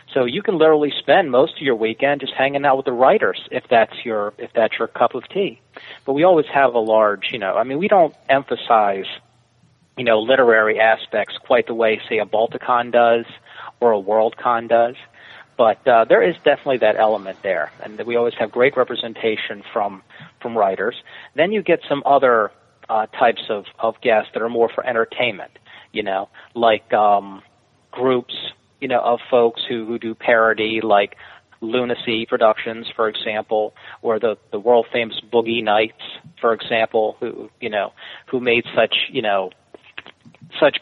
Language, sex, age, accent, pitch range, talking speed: English, male, 40-59, American, 110-125 Hz, 175 wpm